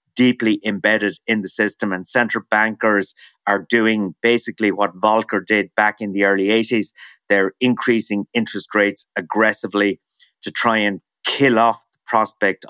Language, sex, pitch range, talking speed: English, male, 100-115 Hz, 145 wpm